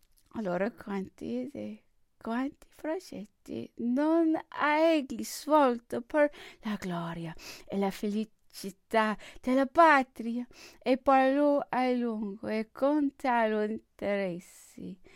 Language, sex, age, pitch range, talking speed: English, female, 20-39, 205-300 Hz, 100 wpm